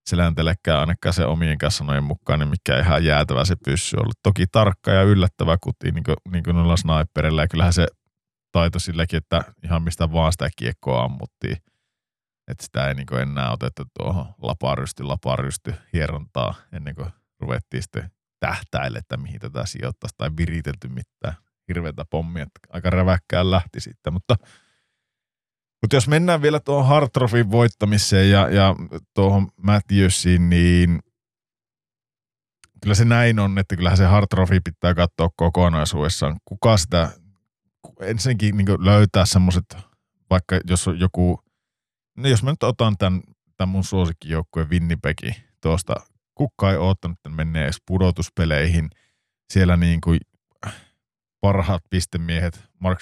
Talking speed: 135 wpm